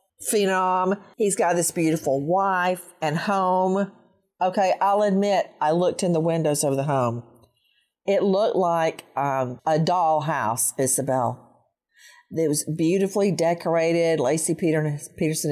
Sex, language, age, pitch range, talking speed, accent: female, English, 40-59, 160-225 Hz, 125 wpm, American